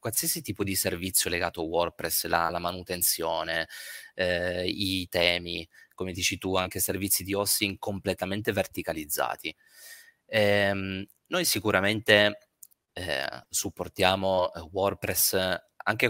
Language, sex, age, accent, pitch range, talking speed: Italian, male, 20-39, native, 90-100 Hz, 110 wpm